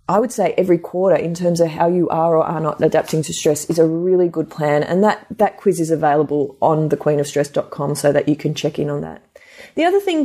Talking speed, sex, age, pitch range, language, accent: 240 wpm, female, 30-49, 155-215 Hz, English, Australian